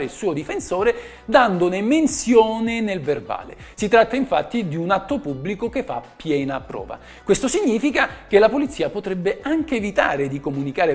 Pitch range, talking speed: 140-220 Hz, 155 wpm